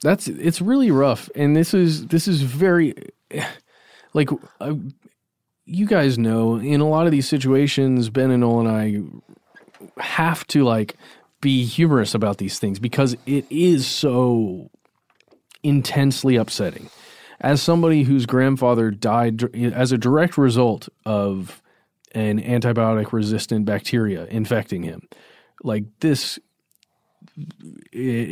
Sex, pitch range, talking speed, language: male, 115-150 Hz, 125 wpm, English